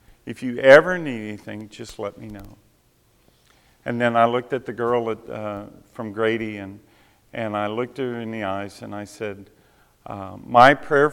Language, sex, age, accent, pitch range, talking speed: English, male, 50-69, American, 105-125 Hz, 185 wpm